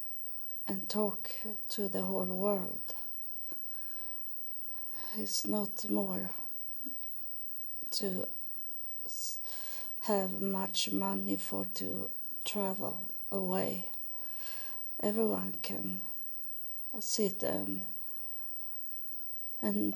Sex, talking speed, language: female, 65 wpm, English